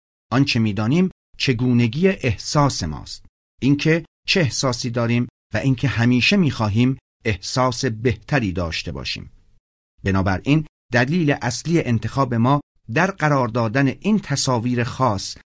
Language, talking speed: Persian, 110 wpm